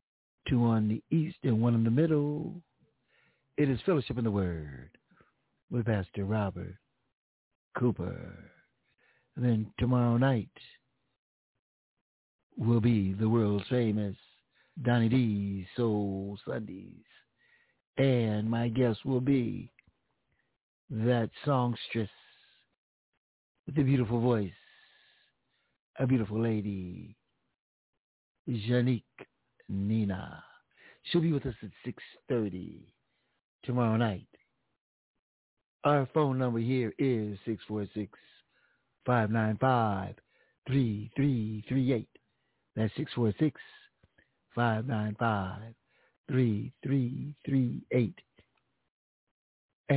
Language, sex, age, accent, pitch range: Japanese, male, 60-79, American, 110-135 Hz